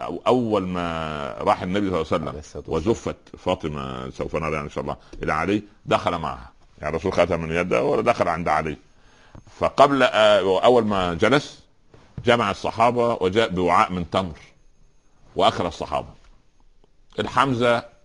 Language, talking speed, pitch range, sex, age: Arabic, 130 wpm, 80-105 Hz, male, 50-69